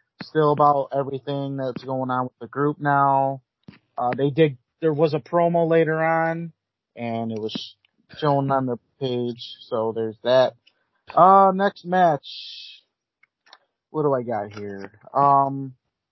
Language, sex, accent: English, male, American